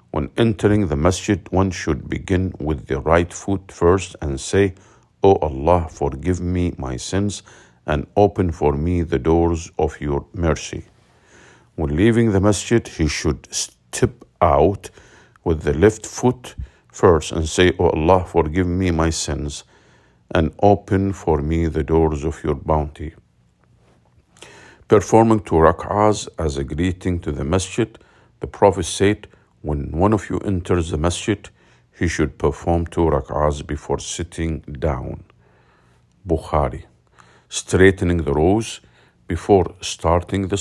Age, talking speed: 50-69, 135 wpm